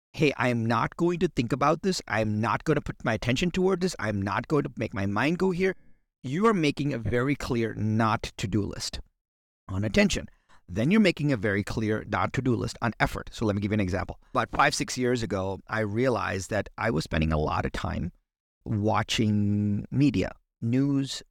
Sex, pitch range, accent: male, 95-130 Hz, American